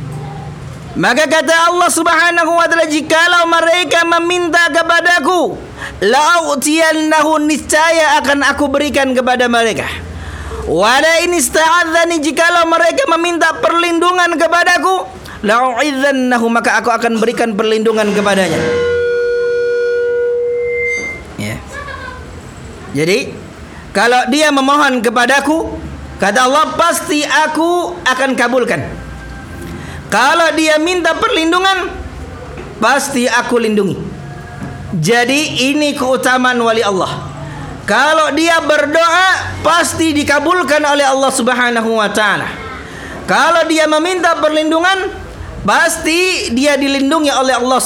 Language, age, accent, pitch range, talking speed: Indonesian, 40-59, native, 245-335 Hz, 90 wpm